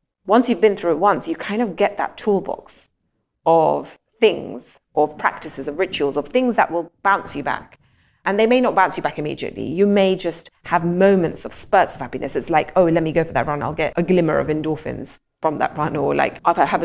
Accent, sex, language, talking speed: British, female, English, 230 wpm